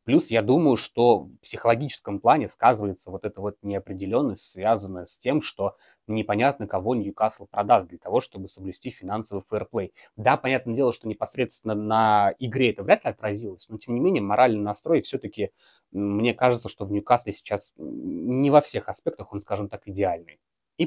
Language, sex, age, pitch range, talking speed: Russian, male, 20-39, 100-125 Hz, 165 wpm